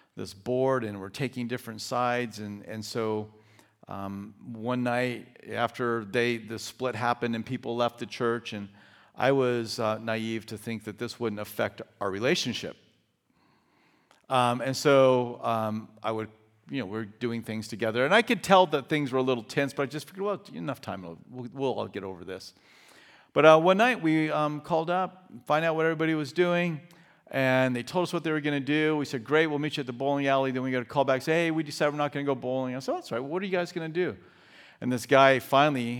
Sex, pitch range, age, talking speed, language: male, 115-150 Hz, 50-69, 230 wpm, English